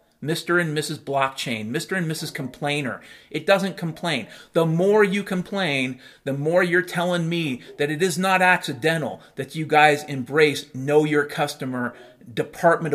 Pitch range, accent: 140-185 Hz, American